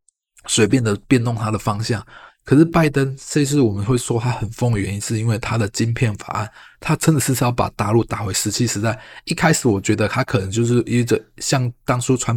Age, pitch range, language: 20-39, 110-130 Hz, Chinese